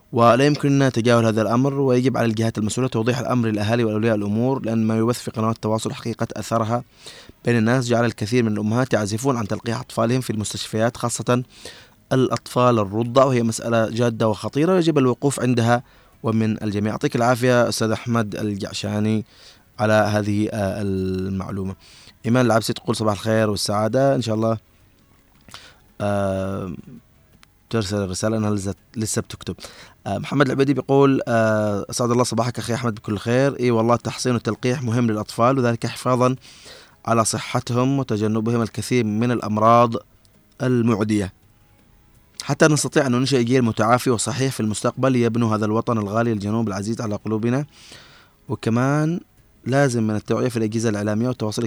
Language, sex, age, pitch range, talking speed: Arabic, male, 20-39, 105-120 Hz, 135 wpm